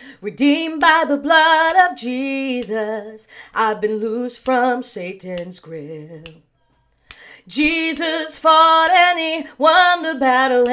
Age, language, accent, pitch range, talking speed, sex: 30-49, English, American, 220-320 Hz, 105 wpm, female